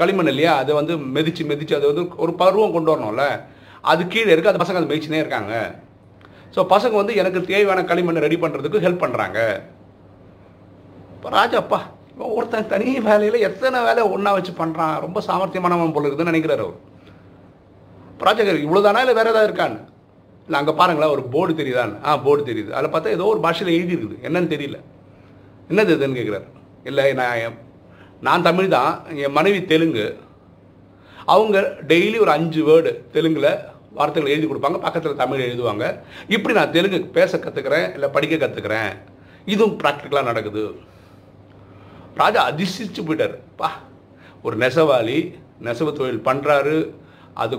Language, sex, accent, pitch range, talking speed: Tamil, male, native, 130-180 Hz, 125 wpm